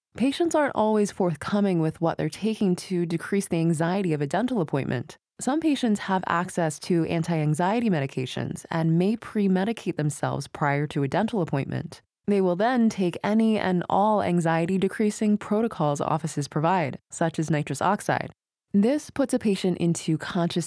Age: 20-39